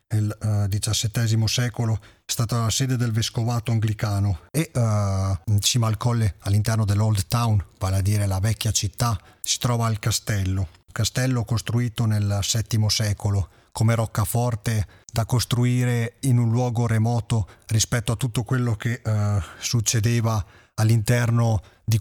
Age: 40-59